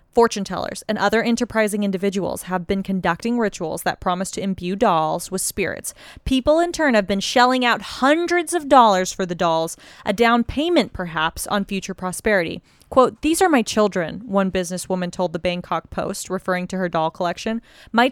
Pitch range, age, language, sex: 185-230 Hz, 20-39, English, female